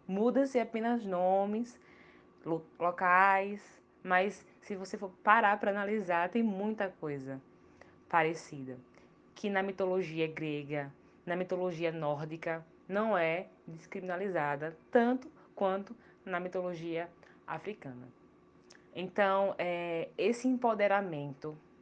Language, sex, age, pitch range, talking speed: Portuguese, female, 20-39, 165-205 Hz, 90 wpm